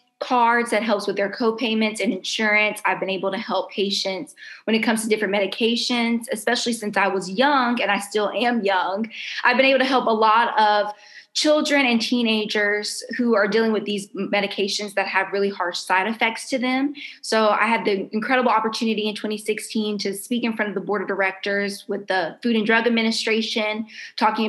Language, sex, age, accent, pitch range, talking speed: English, female, 20-39, American, 200-225 Hz, 195 wpm